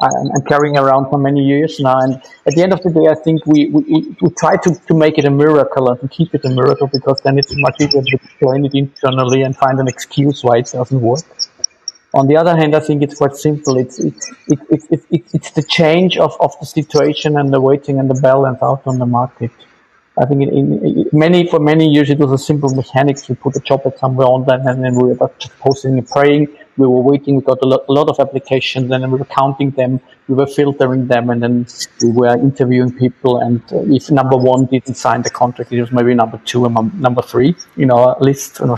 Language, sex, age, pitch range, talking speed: English, male, 50-69, 130-155 Hz, 245 wpm